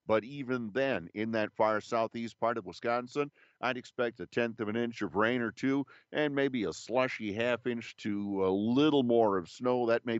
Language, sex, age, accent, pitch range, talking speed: English, male, 50-69, American, 100-125 Hz, 205 wpm